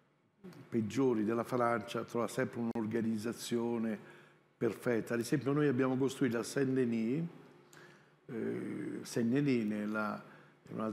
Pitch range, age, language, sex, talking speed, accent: 120-145 Hz, 60-79, Italian, male, 95 wpm, native